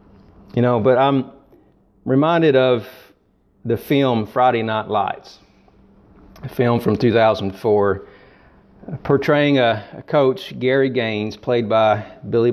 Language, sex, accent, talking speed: Bengali, male, American, 115 wpm